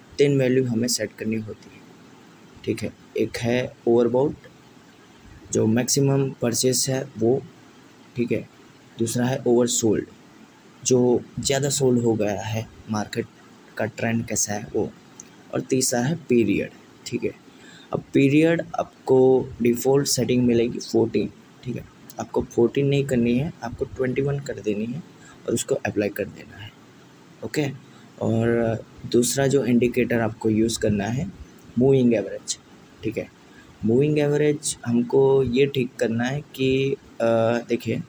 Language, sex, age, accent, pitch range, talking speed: Hindi, male, 20-39, native, 115-135 Hz, 135 wpm